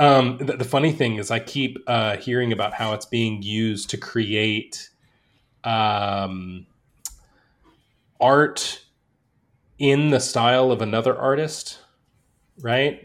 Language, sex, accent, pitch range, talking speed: English, male, American, 105-130 Hz, 120 wpm